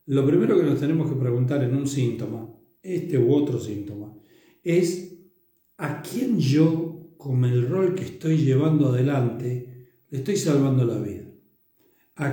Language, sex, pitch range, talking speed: Spanish, male, 130-175 Hz, 150 wpm